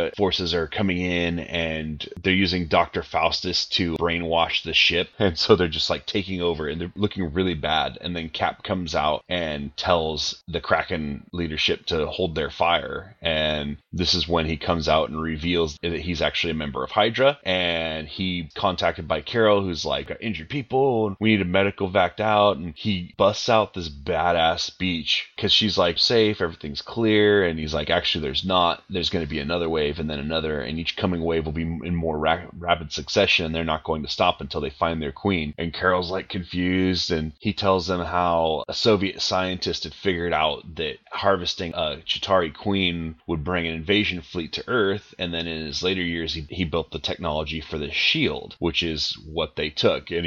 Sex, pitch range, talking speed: male, 80-95 Hz, 200 wpm